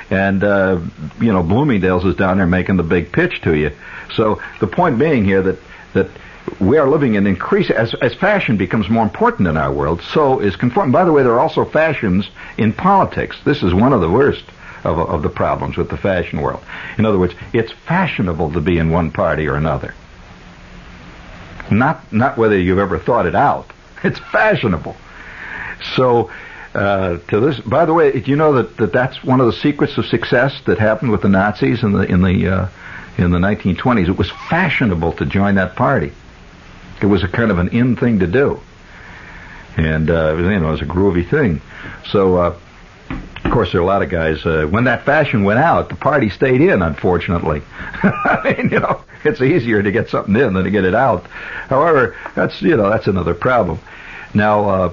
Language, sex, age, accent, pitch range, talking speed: English, male, 60-79, American, 85-105 Hz, 205 wpm